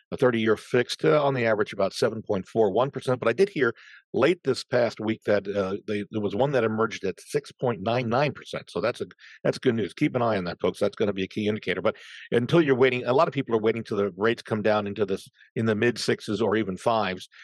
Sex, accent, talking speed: male, American, 235 wpm